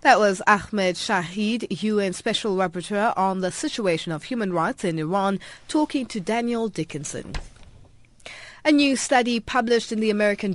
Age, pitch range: 30-49, 180-240 Hz